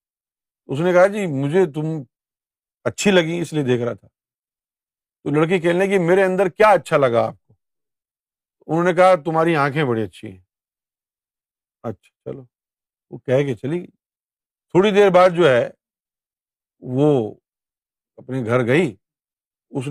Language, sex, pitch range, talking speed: Urdu, male, 125-180 Hz, 150 wpm